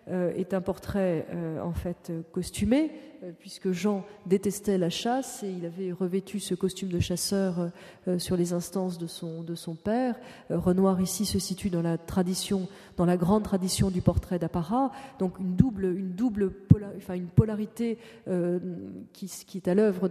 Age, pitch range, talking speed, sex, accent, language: 30-49, 175-200 Hz, 180 wpm, female, French, French